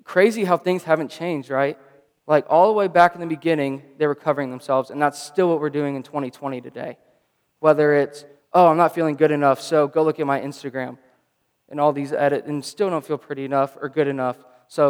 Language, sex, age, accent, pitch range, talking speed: English, male, 20-39, American, 135-155 Hz, 220 wpm